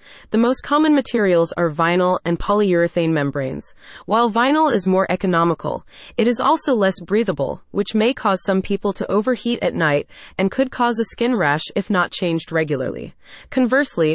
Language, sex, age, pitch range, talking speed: English, female, 20-39, 175-235 Hz, 165 wpm